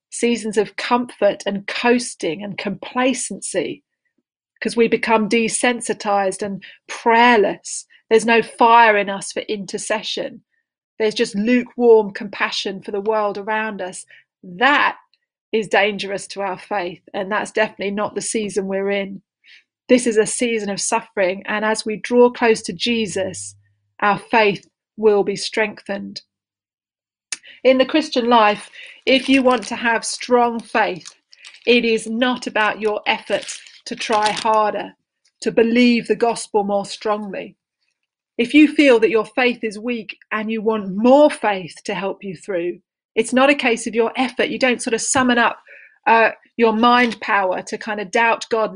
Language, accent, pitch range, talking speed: English, British, 205-240 Hz, 155 wpm